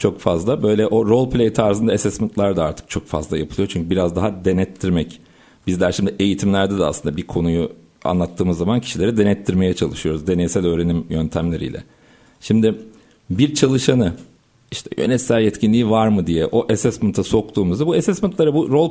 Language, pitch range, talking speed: Turkish, 100-140 Hz, 150 wpm